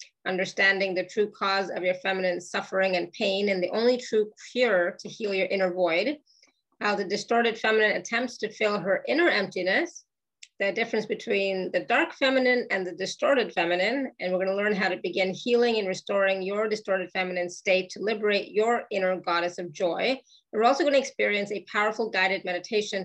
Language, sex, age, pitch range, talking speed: English, female, 30-49, 190-235 Hz, 185 wpm